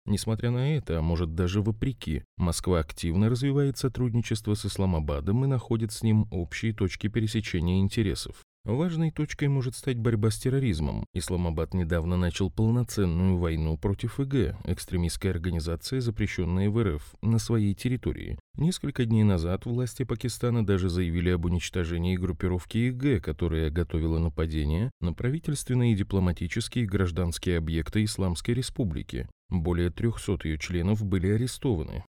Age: 30-49